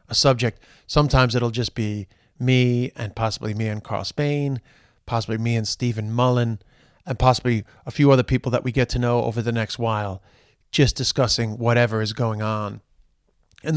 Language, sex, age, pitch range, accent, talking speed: English, male, 30-49, 110-130 Hz, American, 175 wpm